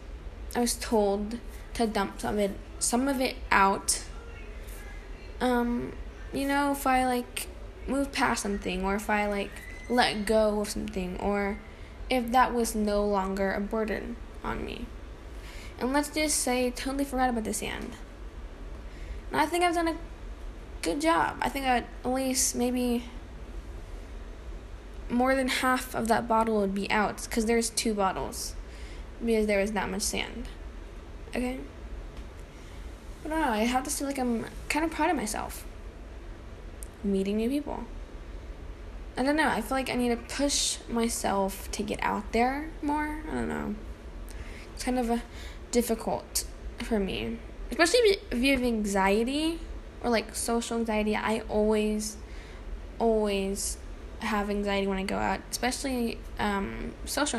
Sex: female